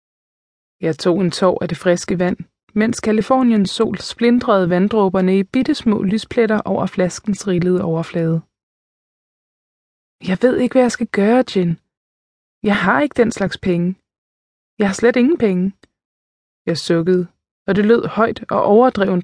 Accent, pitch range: native, 170-225 Hz